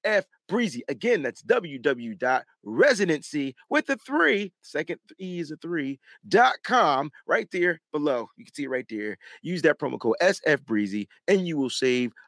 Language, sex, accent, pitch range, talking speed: English, male, American, 145-220 Hz, 145 wpm